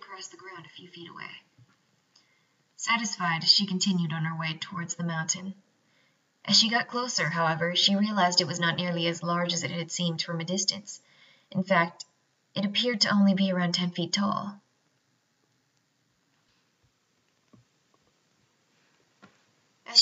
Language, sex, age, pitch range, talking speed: English, female, 20-39, 180-210 Hz, 145 wpm